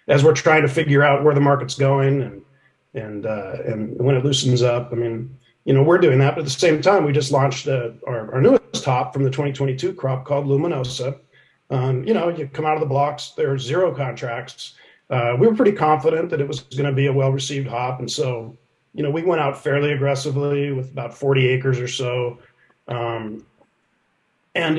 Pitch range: 130-150 Hz